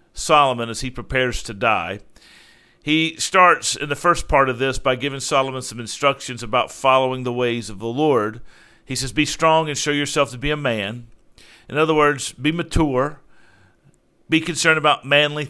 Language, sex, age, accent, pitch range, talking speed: English, male, 50-69, American, 125-155 Hz, 180 wpm